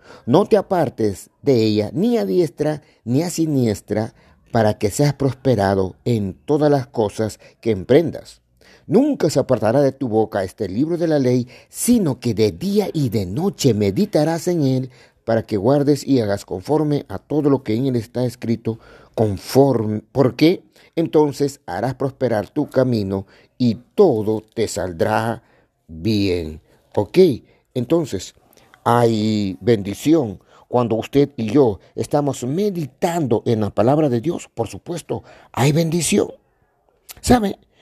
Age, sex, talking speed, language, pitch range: 50-69, male, 140 wpm, Spanish, 110-155 Hz